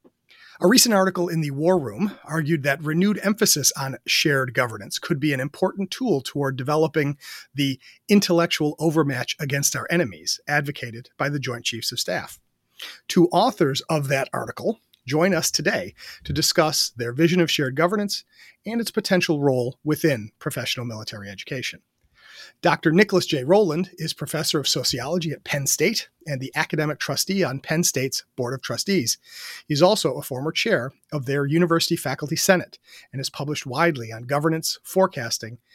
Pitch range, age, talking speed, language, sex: 140-175 Hz, 40-59, 160 wpm, English, male